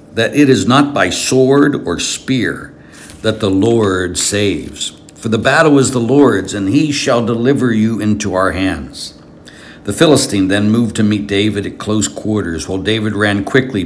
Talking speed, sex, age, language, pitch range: 175 wpm, male, 60-79, English, 90-120 Hz